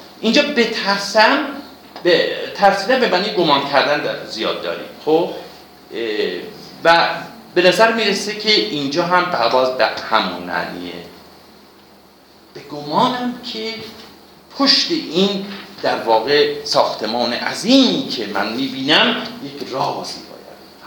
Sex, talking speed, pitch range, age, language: male, 110 wpm, 165-250 Hz, 50-69, Persian